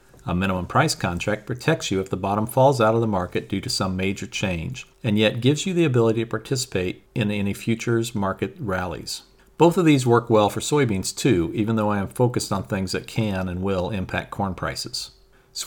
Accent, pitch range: American, 100-130 Hz